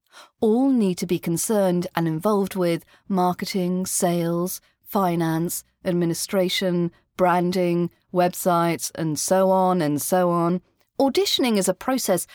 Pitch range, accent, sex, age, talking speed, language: 175-245 Hz, British, female, 40-59, 115 wpm, English